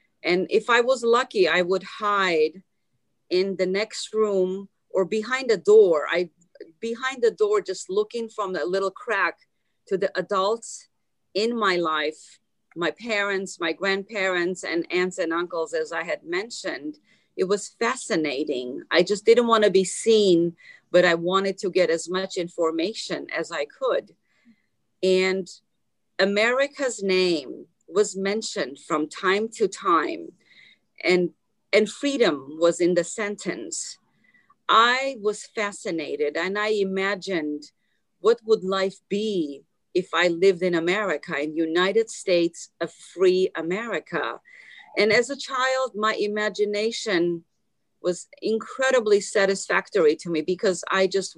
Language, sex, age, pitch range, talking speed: English, female, 40-59, 180-225 Hz, 135 wpm